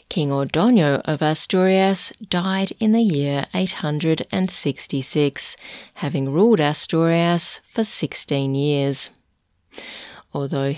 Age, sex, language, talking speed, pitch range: 30-49, female, English, 90 wpm, 140-180 Hz